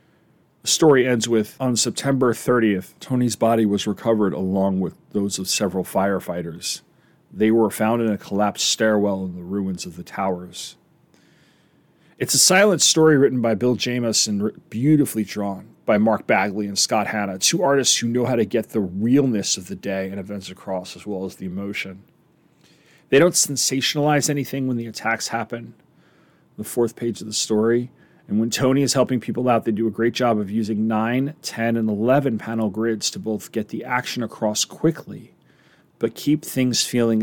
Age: 40-59